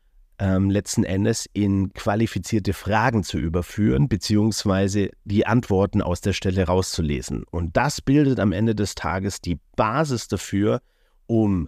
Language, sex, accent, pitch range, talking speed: German, male, German, 90-110 Hz, 135 wpm